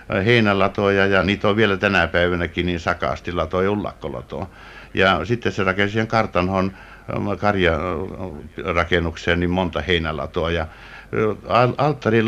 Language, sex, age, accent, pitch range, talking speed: Finnish, male, 60-79, native, 85-105 Hz, 110 wpm